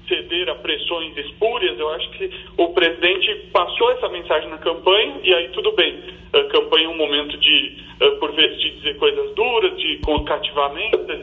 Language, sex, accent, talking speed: Portuguese, male, Brazilian, 170 wpm